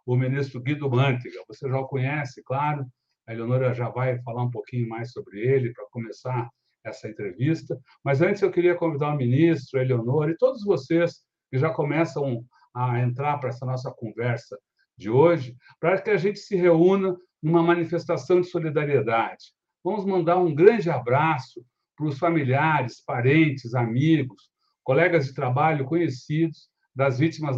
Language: Portuguese